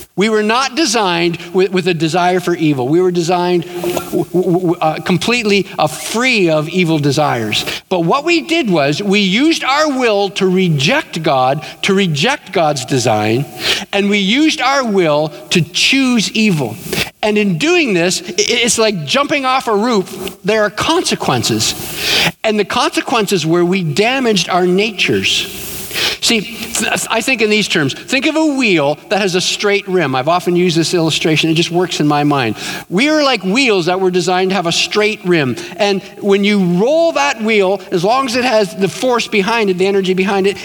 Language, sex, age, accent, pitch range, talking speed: English, male, 50-69, American, 175-225 Hz, 175 wpm